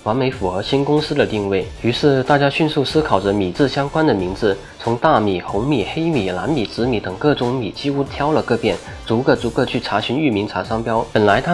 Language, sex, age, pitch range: Chinese, male, 20-39, 105-140 Hz